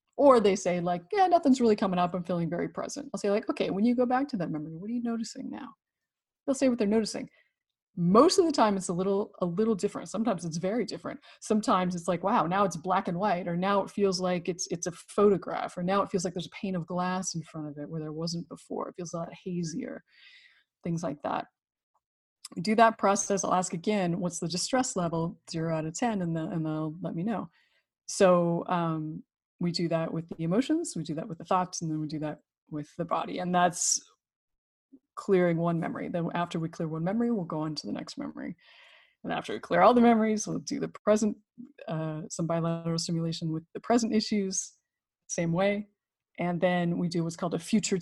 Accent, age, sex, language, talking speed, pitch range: American, 30-49, female, English, 225 wpm, 165-210 Hz